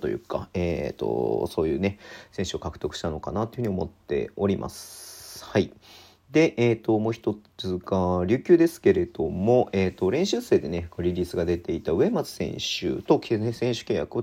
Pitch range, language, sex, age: 90-115 Hz, Japanese, male, 40-59